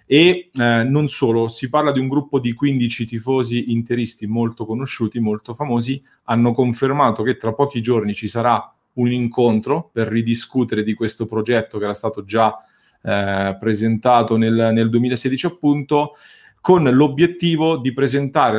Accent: Italian